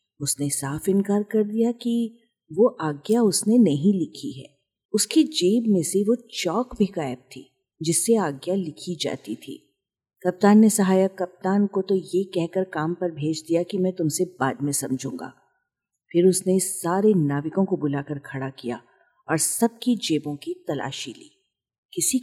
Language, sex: Hindi, female